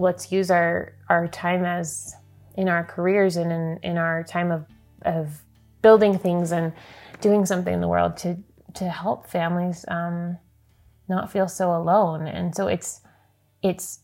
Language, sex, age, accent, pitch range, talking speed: English, female, 20-39, American, 165-185 Hz, 160 wpm